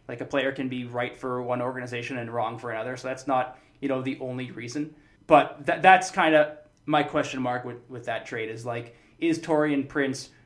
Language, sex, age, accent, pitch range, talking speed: English, male, 20-39, American, 130-155 Hz, 220 wpm